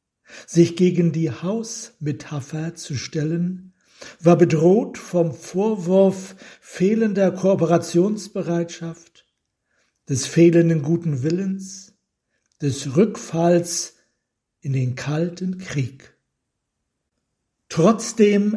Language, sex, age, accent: German, male, 60-79, German